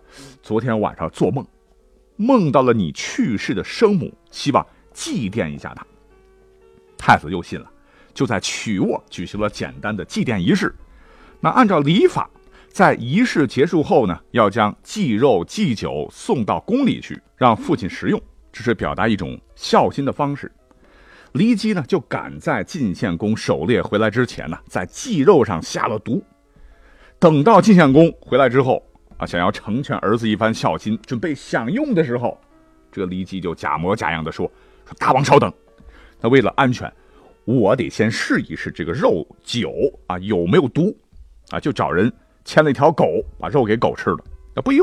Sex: male